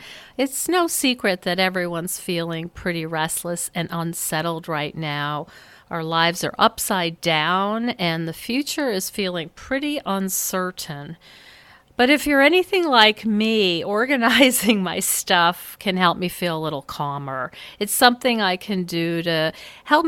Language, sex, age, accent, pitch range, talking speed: English, female, 50-69, American, 170-235 Hz, 140 wpm